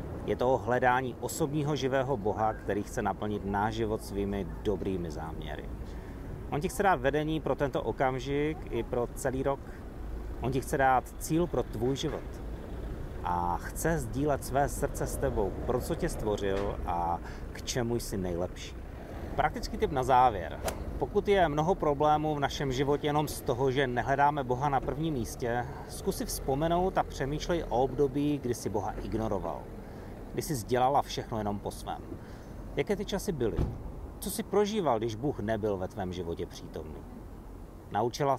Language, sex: Czech, male